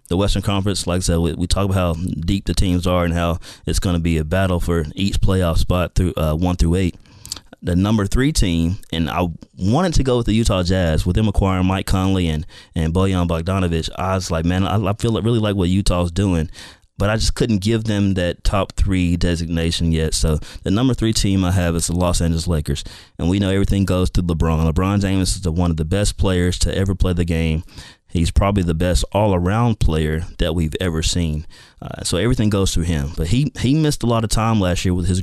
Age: 30-49